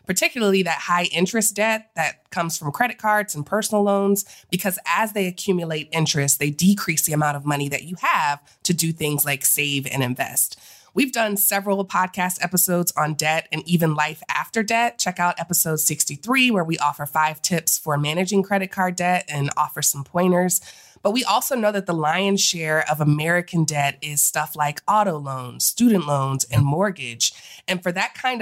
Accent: American